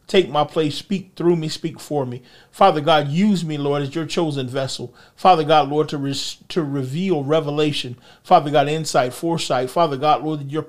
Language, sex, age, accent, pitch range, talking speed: English, male, 40-59, American, 145-170 Hz, 195 wpm